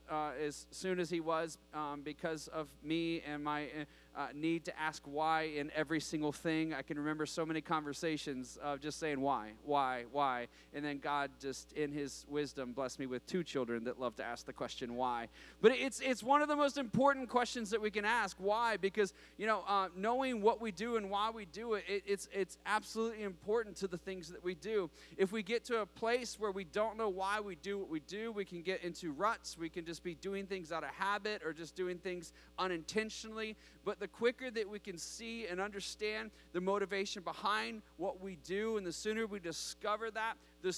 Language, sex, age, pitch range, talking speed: English, male, 30-49, 155-210 Hz, 215 wpm